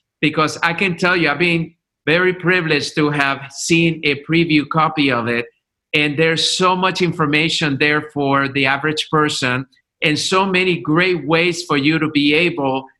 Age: 50-69